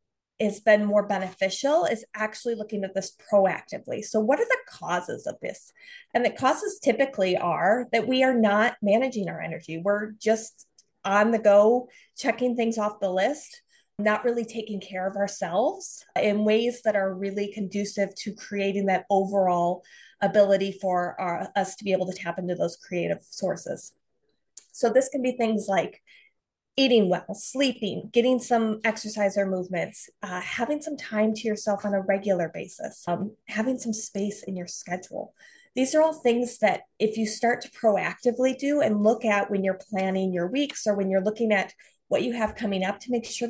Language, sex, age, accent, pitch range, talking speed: English, female, 30-49, American, 195-240 Hz, 180 wpm